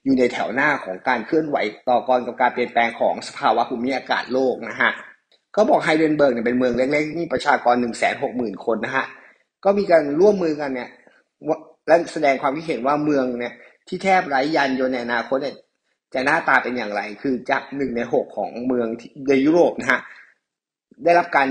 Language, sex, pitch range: English, male, 130-155 Hz